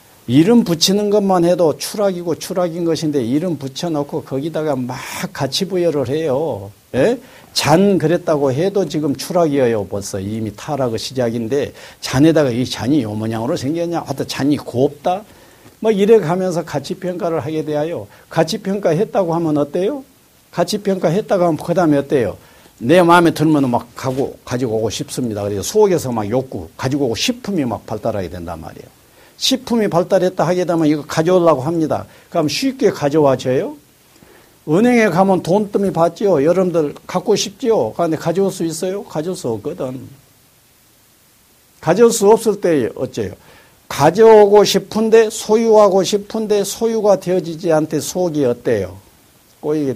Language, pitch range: Korean, 135-190 Hz